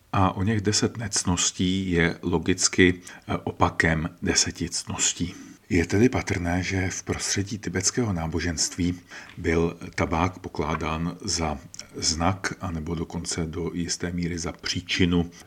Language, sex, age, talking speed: Czech, male, 40-59, 115 wpm